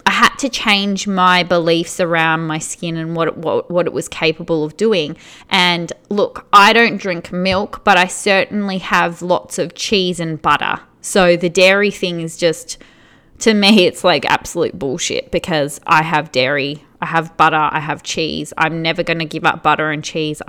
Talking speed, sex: 185 wpm, female